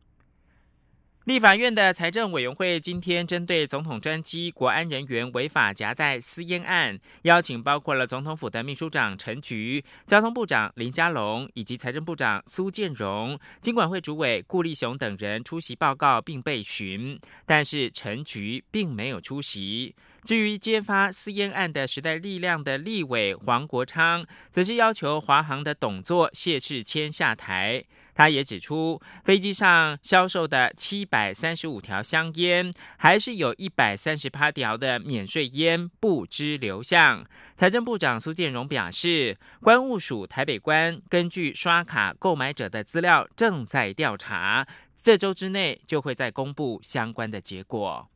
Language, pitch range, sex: German, 125-180 Hz, male